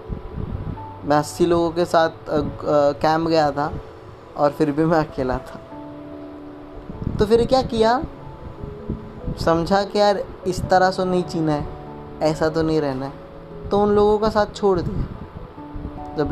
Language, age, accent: Hindi, 20-39, native